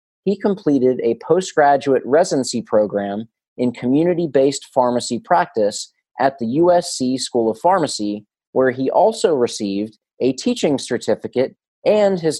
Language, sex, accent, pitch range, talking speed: English, male, American, 115-155 Hz, 125 wpm